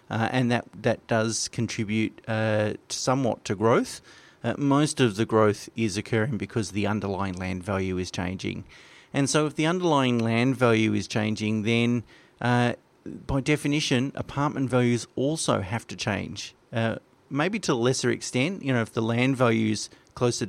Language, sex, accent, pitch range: English, male, Australian, 110-130 Hz